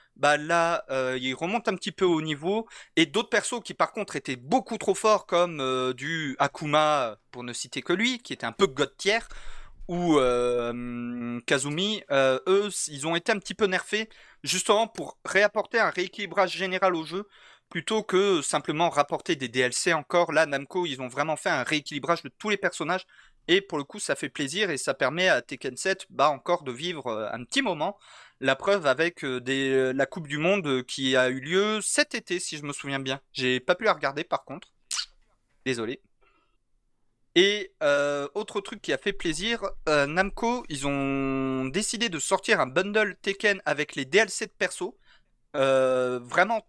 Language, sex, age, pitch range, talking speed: French, male, 30-49, 135-200 Hz, 185 wpm